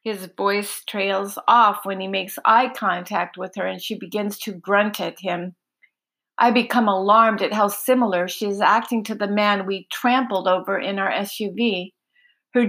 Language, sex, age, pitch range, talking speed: English, female, 50-69, 195-240 Hz, 175 wpm